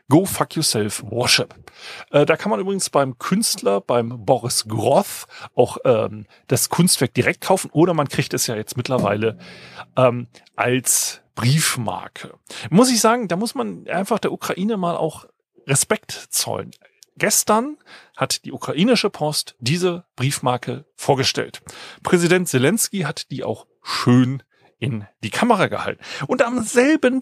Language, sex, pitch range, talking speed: German, male, 120-200 Hz, 140 wpm